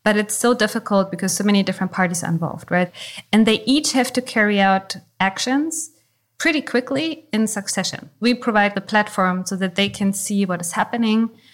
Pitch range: 180-220 Hz